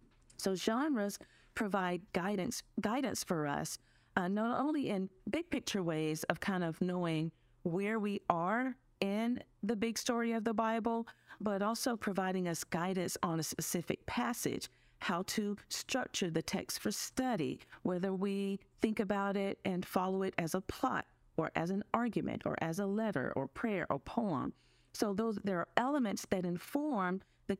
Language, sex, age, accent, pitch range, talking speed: English, female, 40-59, American, 170-230 Hz, 165 wpm